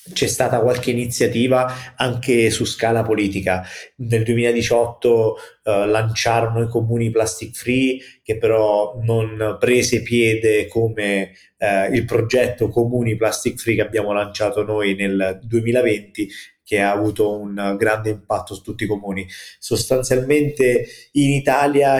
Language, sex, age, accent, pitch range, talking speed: Italian, male, 30-49, native, 110-125 Hz, 130 wpm